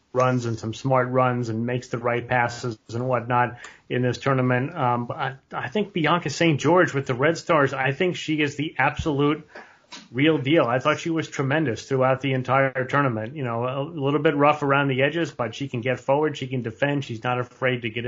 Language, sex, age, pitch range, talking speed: English, male, 30-49, 125-145 Hz, 220 wpm